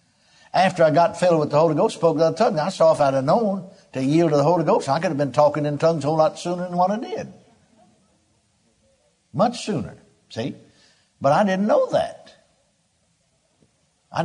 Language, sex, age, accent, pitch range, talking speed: English, male, 60-79, American, 145-195 Hz, 200 wpm